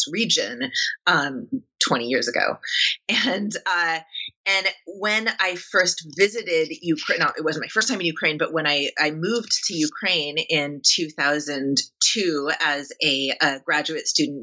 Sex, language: female, English